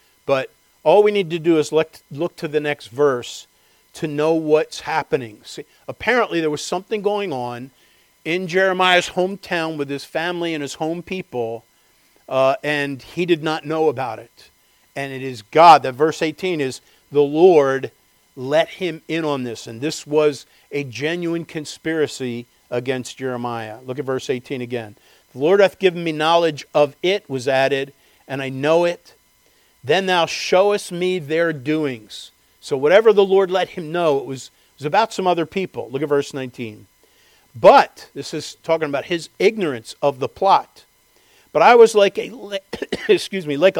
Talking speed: 165 wpm